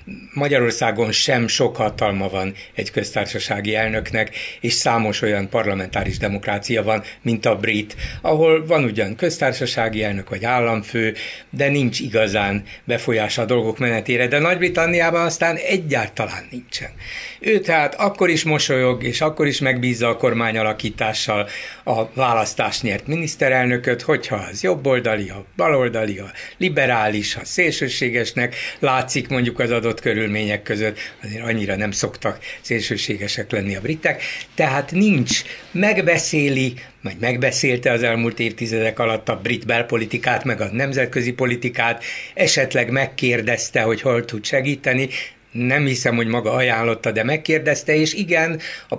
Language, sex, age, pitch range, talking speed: Hungarian, male, 60-79, 110-135 Hz, 130 wpm